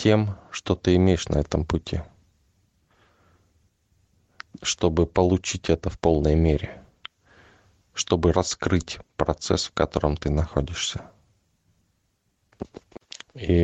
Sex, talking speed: male, 90 wpm